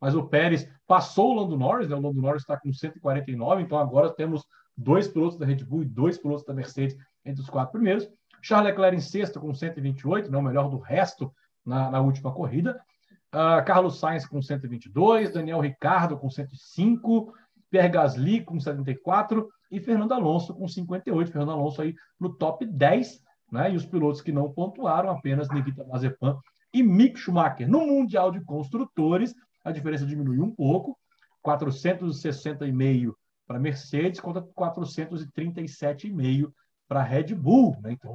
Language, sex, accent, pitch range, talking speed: Portuguese, male, Brazilian, 140-190 Hz, 160 wpm